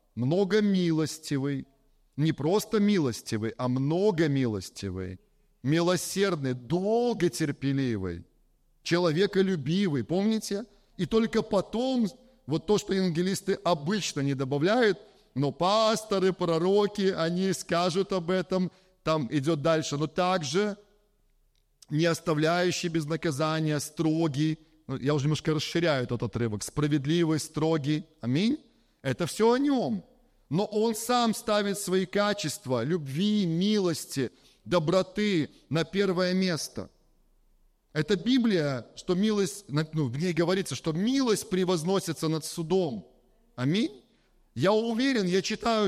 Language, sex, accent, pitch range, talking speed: Russian, male, native, 155-200 Hz, 105 wpm